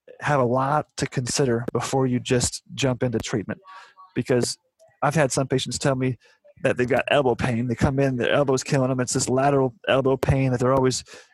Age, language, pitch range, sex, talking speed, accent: 30-49, English, 125-140 Hz, male, 200 wpm, American